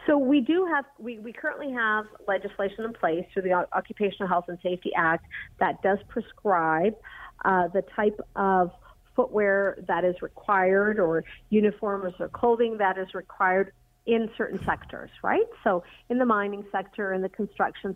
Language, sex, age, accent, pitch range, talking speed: English, female, 50-69, American, 185-215 Hz, 165 wpm